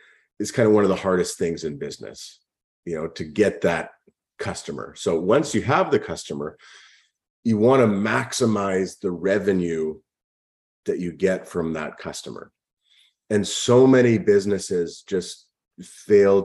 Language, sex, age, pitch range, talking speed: English, male, 30-49, 90-110 Hz, 145 wpm